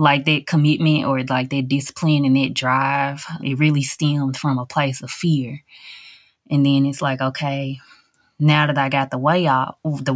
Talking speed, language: 185 wpm, English